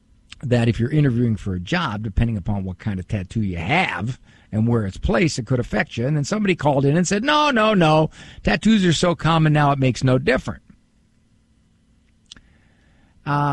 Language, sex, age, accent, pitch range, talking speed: English, male, 50-69, American, 115-160 Hz, 190 wpm